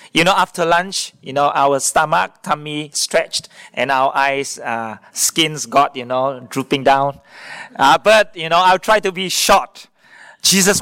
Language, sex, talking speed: English, male, 165 wpm